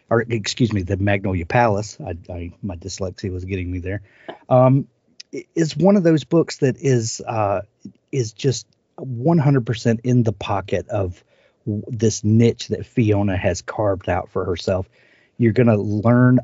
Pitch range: 100-125 Hz